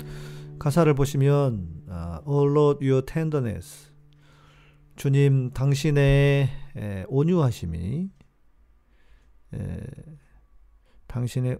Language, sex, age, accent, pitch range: Korean, male, 40-59, native, 95-145 Hz